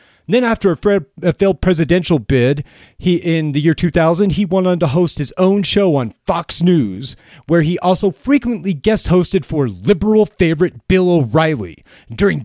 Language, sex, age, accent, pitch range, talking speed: English, male, 30-49, American, 150-200 Hz, 160 wpm